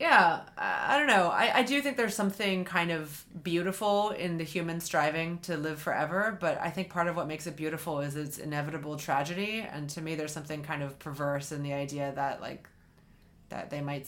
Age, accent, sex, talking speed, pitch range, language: 30-49, American, female, 210 wpm, 155-200 Hz, English